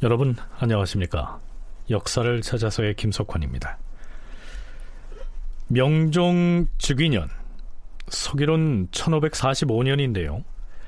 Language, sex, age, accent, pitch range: Korean, male, 40-59, native, 100-160 Hz